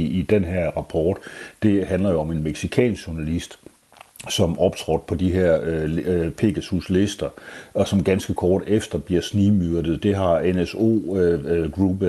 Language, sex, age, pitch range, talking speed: Danish, male, 60-79, 85-100 Hz, 145 wpm